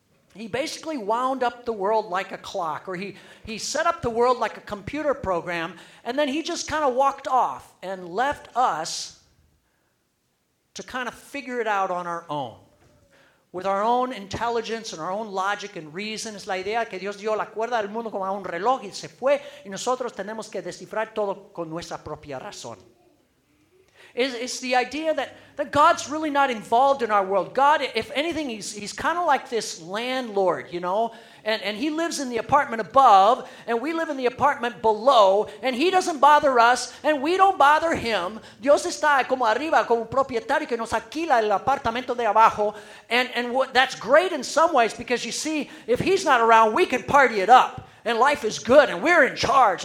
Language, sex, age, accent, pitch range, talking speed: English, male, 40-59, American, 205-280 Hz, 200 wpm